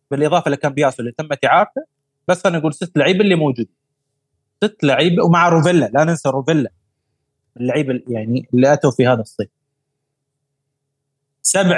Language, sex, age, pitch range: Arabic, male, 30-49, 135-170 Hz